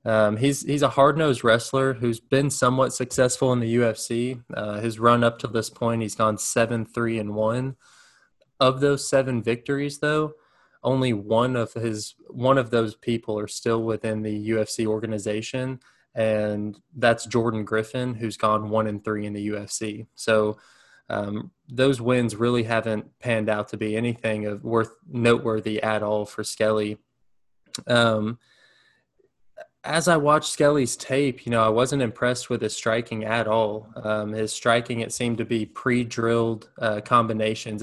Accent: American